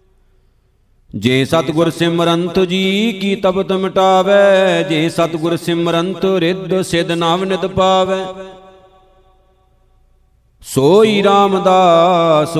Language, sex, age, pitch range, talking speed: Punjabi, male, 50-69, 165-190 Hz, 80 wpm